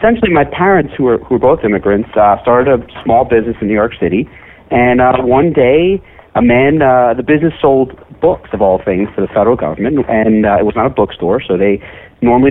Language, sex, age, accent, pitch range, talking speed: English, male, 40-59, American, 110-145 Hz, 220 wpm